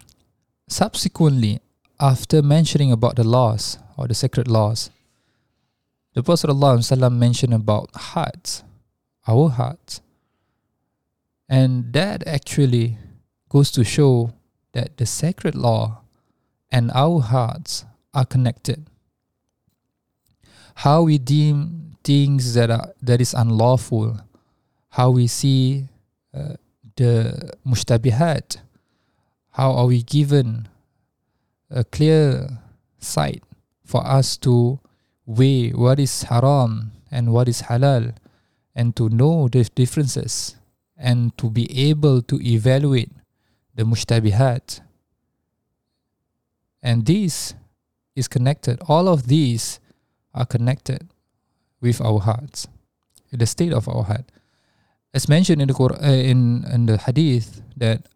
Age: 20-39